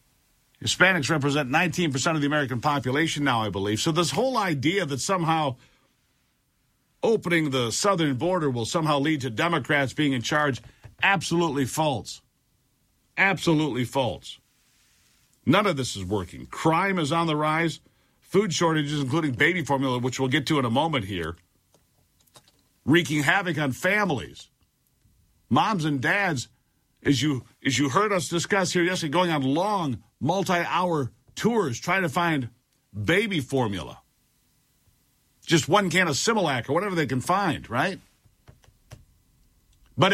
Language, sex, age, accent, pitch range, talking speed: English, male, 50-69, American, 130-175 Hz, 140 wpm